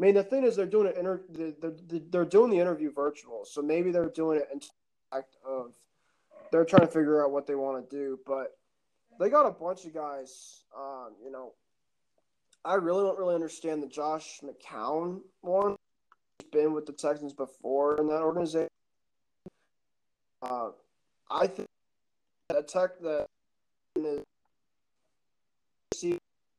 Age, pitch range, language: 20-39, 145-175 Hz, English